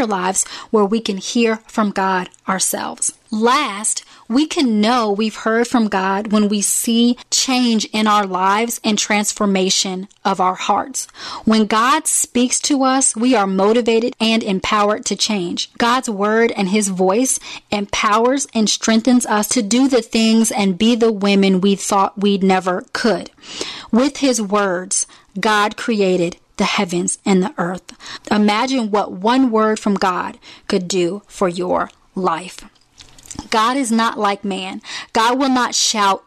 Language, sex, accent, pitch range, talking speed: English, female, American, 195-235 Hz, 150 wpm